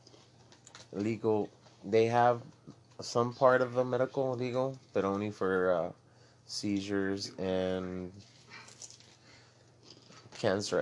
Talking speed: 90 wpm